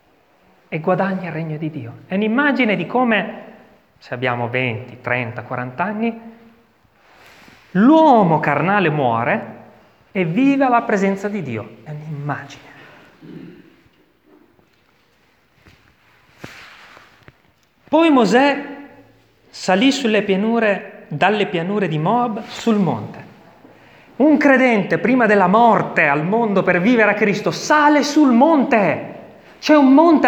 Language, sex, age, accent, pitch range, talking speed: Italian, male, 30-49, native, 170-240 Hz, 110 wpm